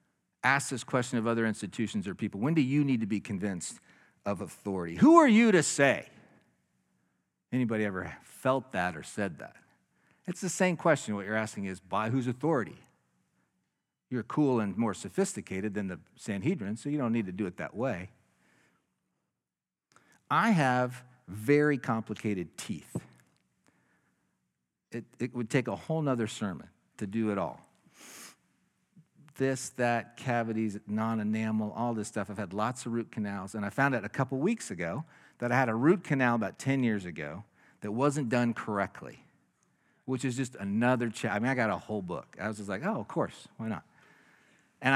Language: English